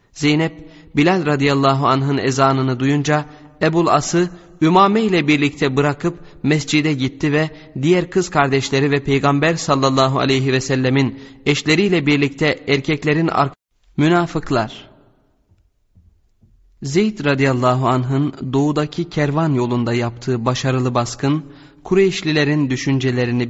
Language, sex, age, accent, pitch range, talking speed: Turkish, male, 30-49, native, 125-155 Hz, 100 wpm